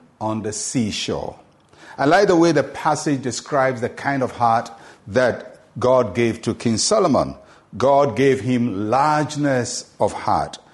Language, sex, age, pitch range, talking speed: English, male, 50-69, 125-175 Hz, 145 wpm